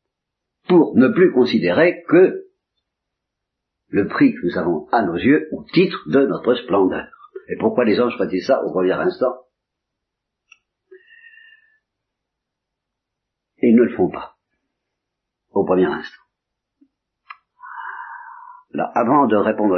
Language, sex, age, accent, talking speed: Italian, male, 50-69, French, 120 wpm